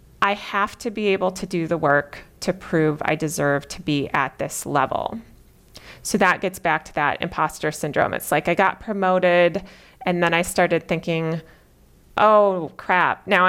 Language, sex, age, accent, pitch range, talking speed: English, female, 30-49, American, 160-195 Hz, 175 wpm